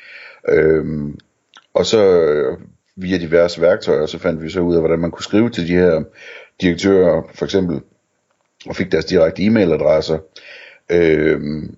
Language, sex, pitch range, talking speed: Danish, male, 80-95 Hz, 150 wpm